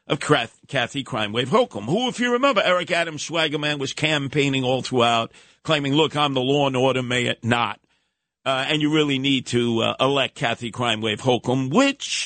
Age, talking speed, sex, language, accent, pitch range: 50-69, 190 wpm, male, English, American, 115-145 Hz